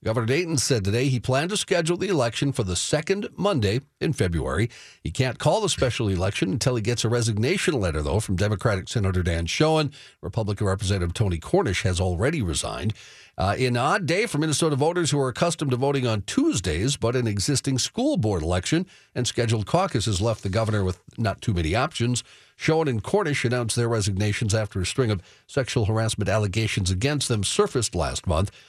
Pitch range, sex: 105-135 Hz, male